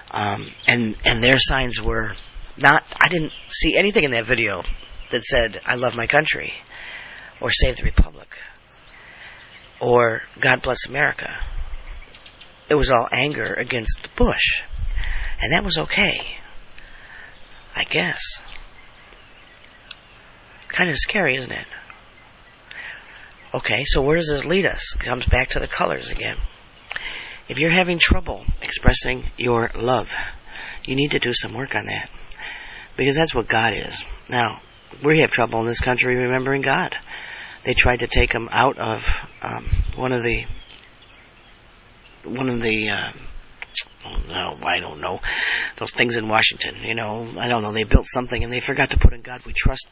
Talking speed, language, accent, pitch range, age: 155 wpm, English, American, 110-130 Hz, 40-59